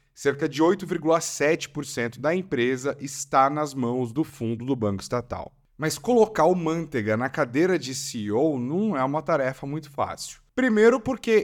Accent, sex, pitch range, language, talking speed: Brazilian, male, 125-165 Hz, Portuguese, 150 wpm